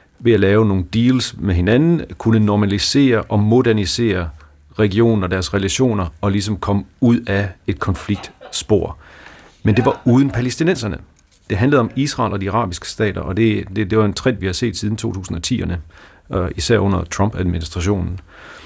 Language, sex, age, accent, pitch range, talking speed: Danish, male, 40-59, native, 90-115 Hz, 160 wpm